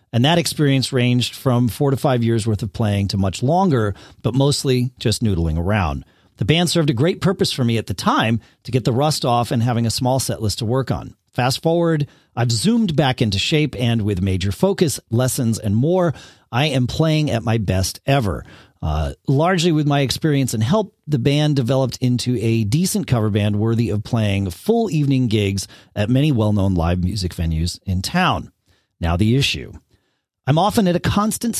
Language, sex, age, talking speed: English, male, 40-59, 195 wpm